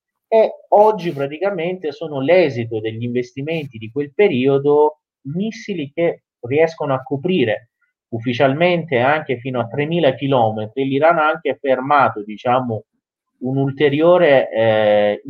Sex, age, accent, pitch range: male, 30-49, native, 115-155 Hz